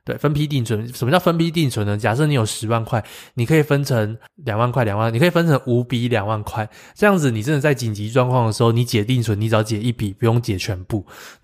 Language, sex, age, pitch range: Chinese, male, 20-39, 110-135 Hz